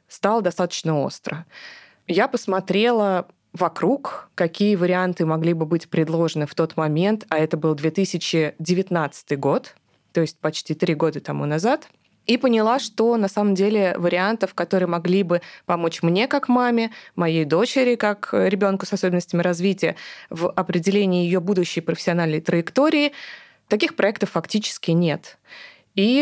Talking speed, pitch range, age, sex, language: 135 wpm, 160-200 Hz, 20-39, female, Russian